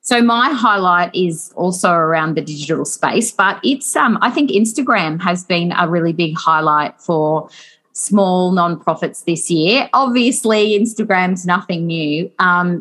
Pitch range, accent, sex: 175-220 Hz, Australian, female